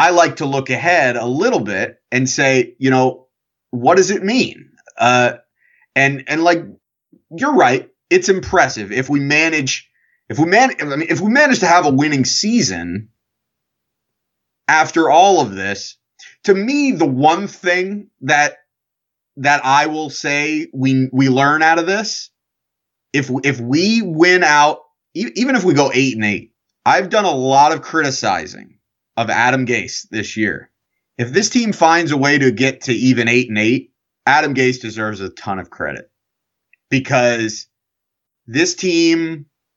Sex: male